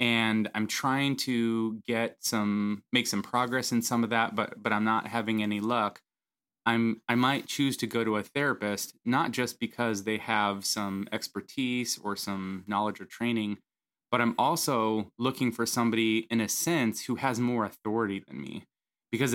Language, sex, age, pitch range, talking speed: English, male, 20-39, 105-120 Hz, 175 wpm